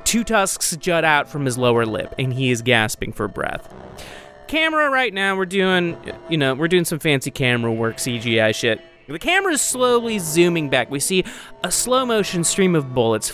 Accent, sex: American, male